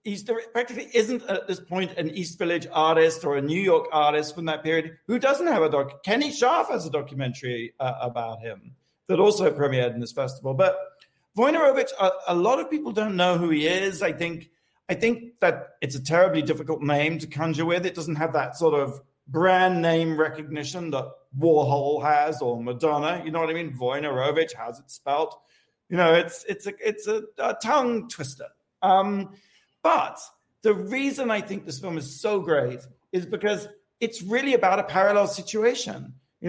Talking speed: 190 wpm